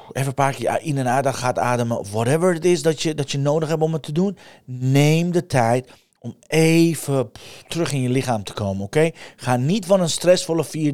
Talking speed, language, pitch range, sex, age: 225 wpm, Dutch, 130-190 Hz, male, 40-59